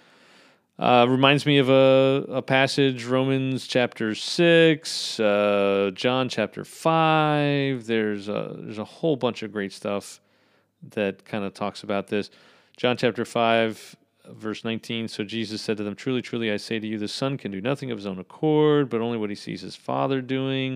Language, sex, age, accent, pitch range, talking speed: English, male, 40-59, American, 110-135 Hz, 180 wpm